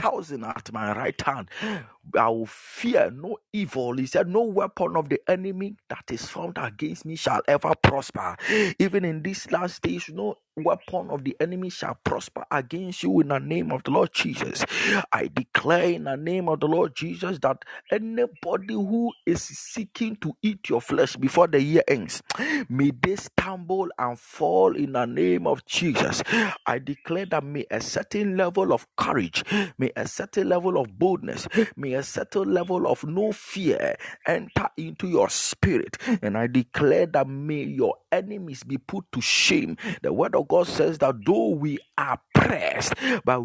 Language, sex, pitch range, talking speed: English, male, 135-195 Hz, 175 wpm